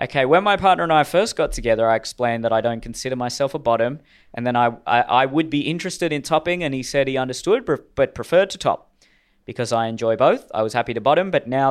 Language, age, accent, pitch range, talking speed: English, 20-39, Australian, 115-135 Hz, 245 wpm